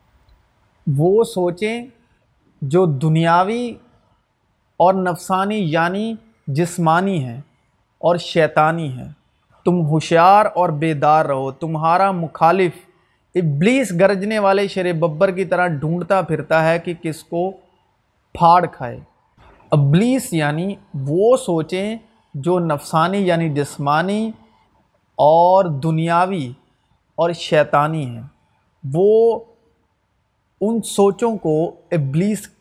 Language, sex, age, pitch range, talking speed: Urdu, male, 30-49, 145-195 Hz, 95 wpm